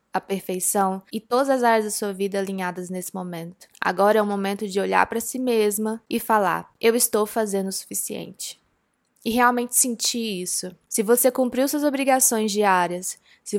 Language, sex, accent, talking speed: Portuguese, female, Brazilian, 170 wpm